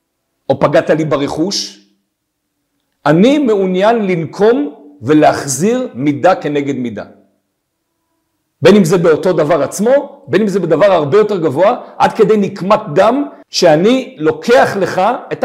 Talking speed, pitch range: 125 wpm, 150-215 Hz